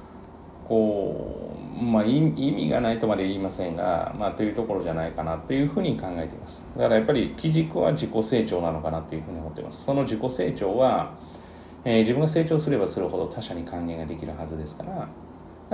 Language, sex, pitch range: Japanese, male, 80-130 Hz